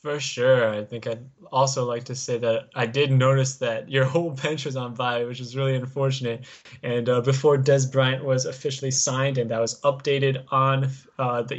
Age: 20-39